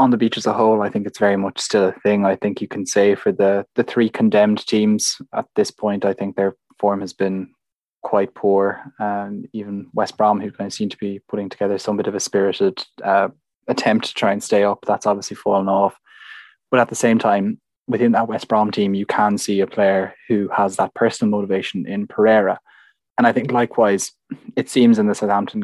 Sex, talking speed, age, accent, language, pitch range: male, 220 wpm, 20-39, Irish, English, 100-110 Hz